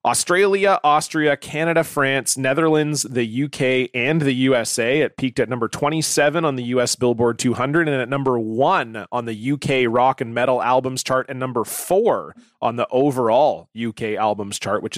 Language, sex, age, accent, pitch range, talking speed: English, male, 30-49, American, 115-145 Hz, 170 wpm